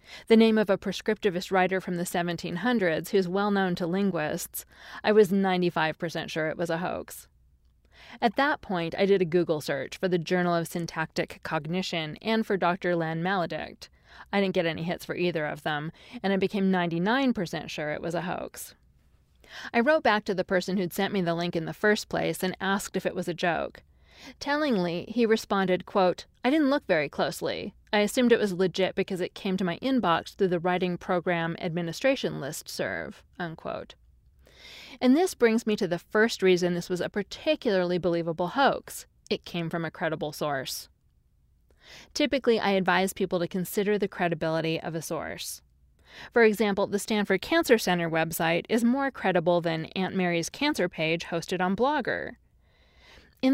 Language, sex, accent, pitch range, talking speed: English, female, American, 170-205 Hz, 180 wpm